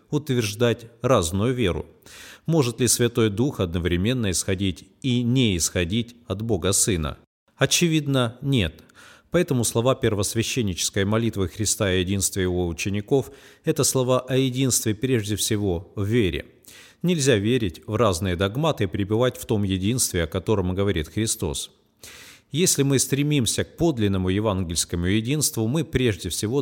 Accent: native